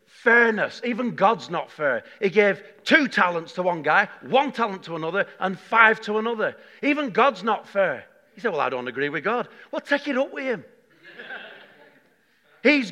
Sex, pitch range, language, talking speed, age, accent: male, 180-255 Hz, English, 180 wpm, 40-59, British